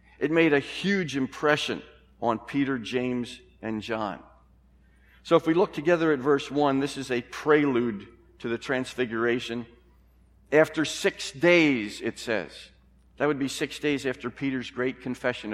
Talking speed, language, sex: 150 wpm, English, male